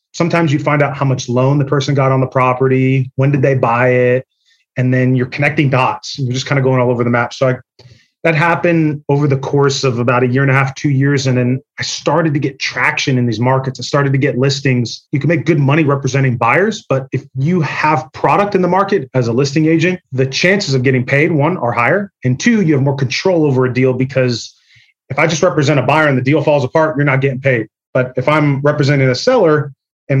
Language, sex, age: English, male, 30-49